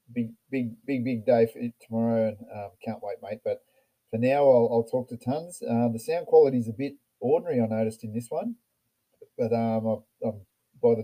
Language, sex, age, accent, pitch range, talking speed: English, male, 30-49, Australian, 110-130 Hz, 215 wpm